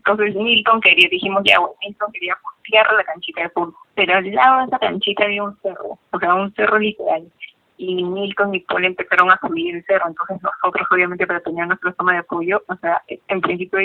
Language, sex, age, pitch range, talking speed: Spanish, female, 20-39, 175-205 Hz, 210 wpm